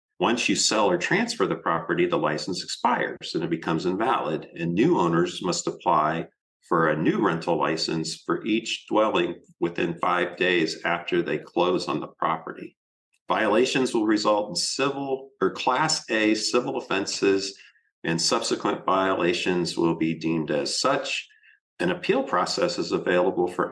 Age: 50-69